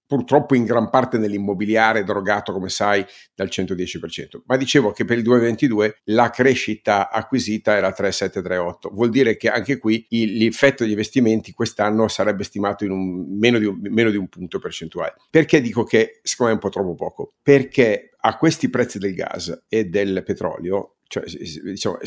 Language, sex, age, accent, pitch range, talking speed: Italian, male, 50-69, native, 105-135 Hz, 170 wpm